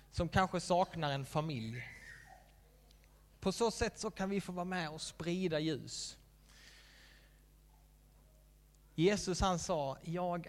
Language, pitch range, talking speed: Swedish, 135-170 Hz, 120 wpm